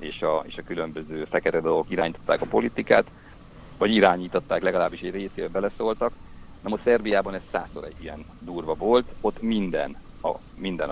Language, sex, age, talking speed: Hungarian, male, 50-69, 160 wpm